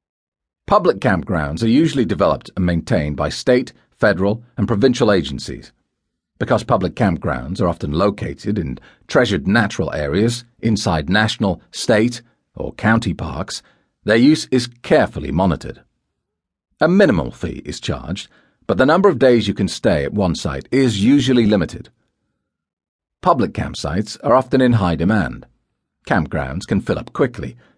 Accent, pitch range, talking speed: British, 90-120 Hz, 140 wpm